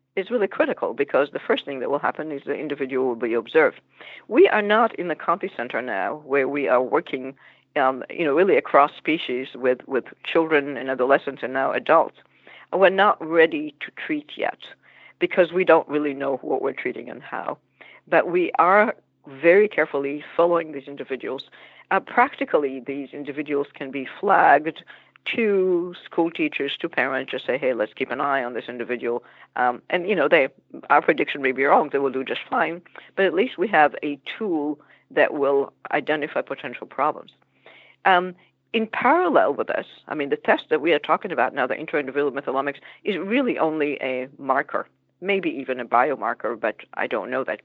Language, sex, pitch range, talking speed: English, female, 135-195 Hz, 185 wpm